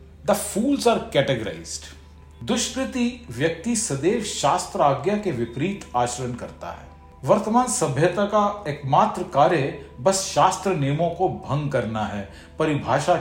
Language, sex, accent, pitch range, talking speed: Hindi, male, native, 115-185 Hz, 120 wpm